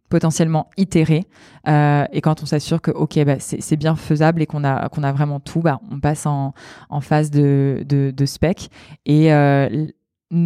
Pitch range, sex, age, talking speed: 145-165 Hz, female, 20-39, 190 wpm